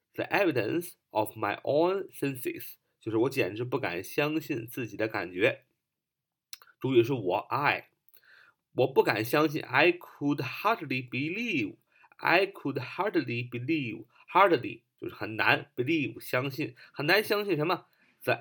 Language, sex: Chinese, male